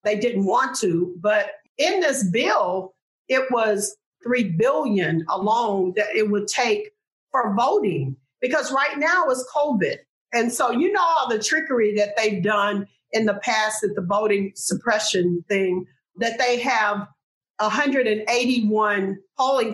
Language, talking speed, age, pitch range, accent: English, 145 wpm, 50-69, 195-255 Hz, American